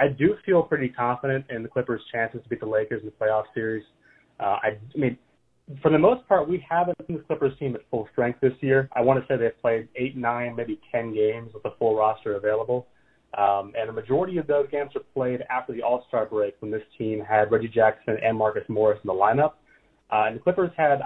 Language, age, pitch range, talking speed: English, 30-49, 110-145 Hz, 230 wpm